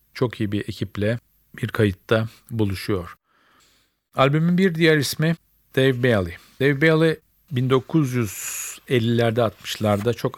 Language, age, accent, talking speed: Turkish, 50-69, native, 105 wpm